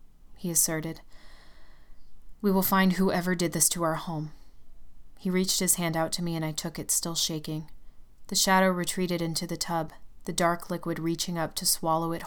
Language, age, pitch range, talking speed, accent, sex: English, 20-39, 165-190 Hz, 185 wpm, American, female